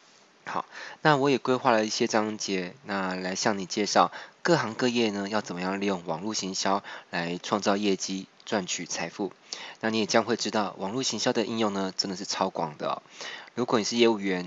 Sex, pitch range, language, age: male, 95-110 Hz, Chinese, 20-39